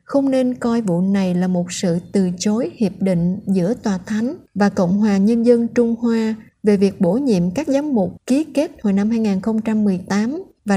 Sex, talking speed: female, 195 wpm